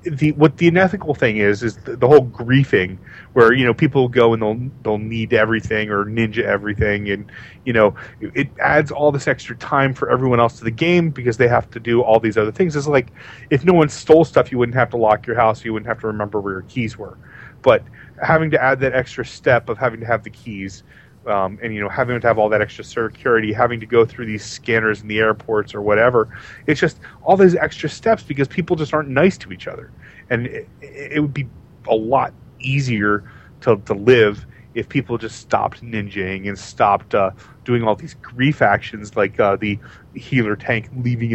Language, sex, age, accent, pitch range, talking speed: English, male, 30-49, American, 110-135 Hz, 215 wpm